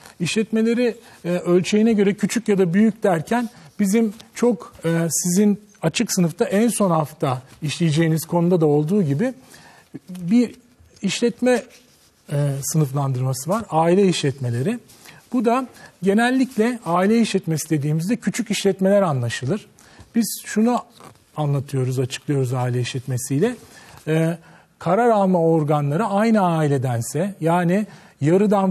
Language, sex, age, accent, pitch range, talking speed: Turkish, male, 40-59, native, 145-210 Hz, 110 wpm